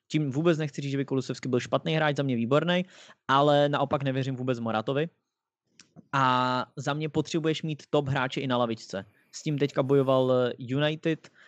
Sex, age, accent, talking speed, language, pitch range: male, 20-39, Czech, 165 wpm, English, 125-160 Hz